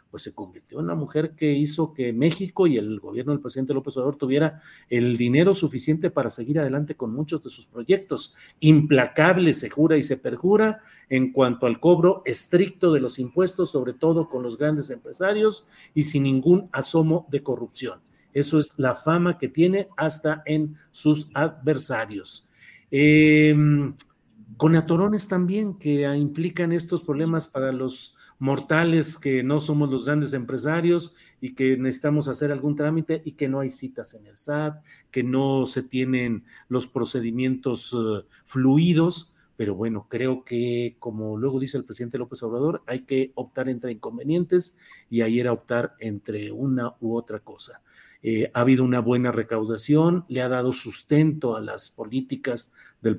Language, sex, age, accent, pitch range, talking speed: Spanish, male, 50-69, Mexican, 125-155 Hz, 160 wpm